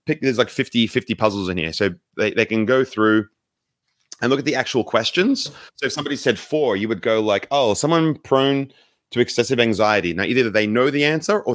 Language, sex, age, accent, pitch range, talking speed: English, male, 30-49, Australian, 100-125 Hz, 215 wpm